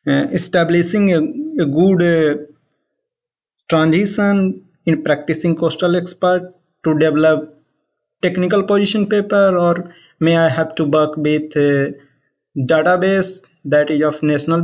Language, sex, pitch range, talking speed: English, male, 165-195 Hz, 120 wpm